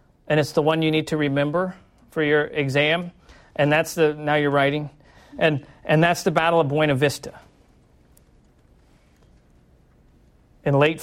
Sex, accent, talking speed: male, American, 145 wpm